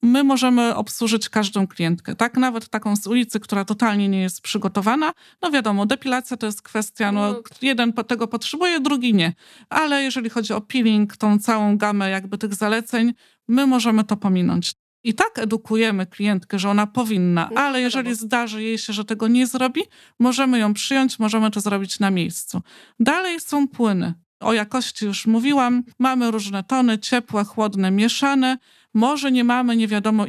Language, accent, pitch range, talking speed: Polish, native, 200-240 Hz, 165 wpm